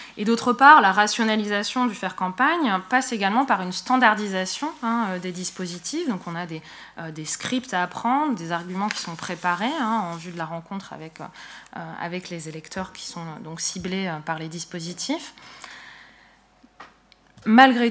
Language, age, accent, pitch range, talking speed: French, 20-39, French, 180-230 Hz, 155 wpm